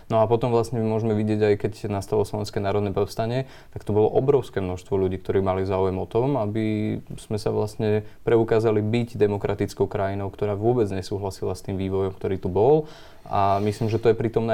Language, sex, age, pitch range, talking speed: Slovak, male, 20-39, 100-110 Hz, 190 wpm